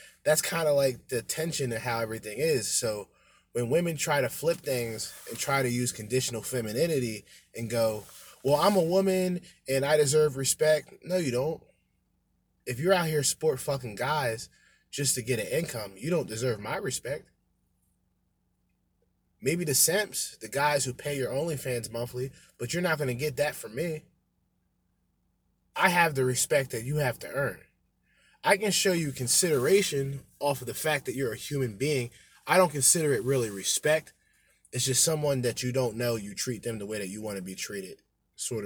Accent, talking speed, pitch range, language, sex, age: American, 185 wpm, 115-150 Hz, English, male, 20-39